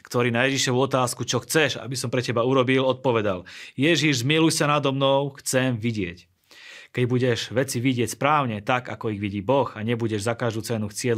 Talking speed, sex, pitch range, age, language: 190 wpm, male, 110-135 Hz, 30-49, Slovak